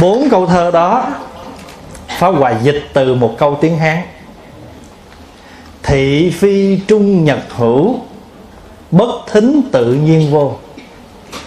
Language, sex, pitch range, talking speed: Vietnamese, male, 135-205 Hz, 115 wpm